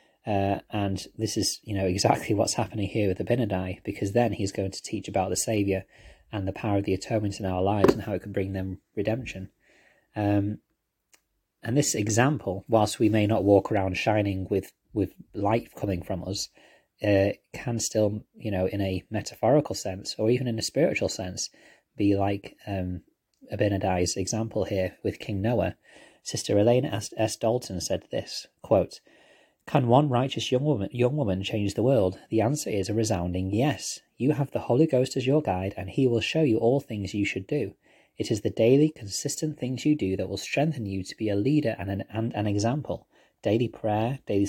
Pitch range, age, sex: 100-120 Hz, 30-49, male